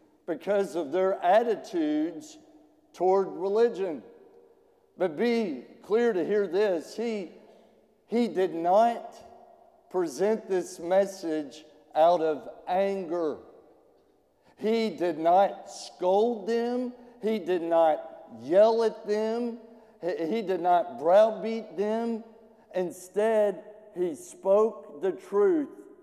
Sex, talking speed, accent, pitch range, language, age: male, 100 wpm, American, 175-225 Hz, English, 50-69